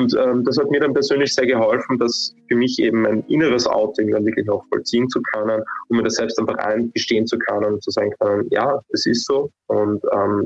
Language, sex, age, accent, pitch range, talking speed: German, male, 20-39, German, 110-130 Hz, 230 wpm